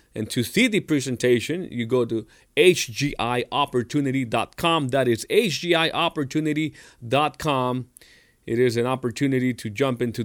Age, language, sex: 30-49, English, male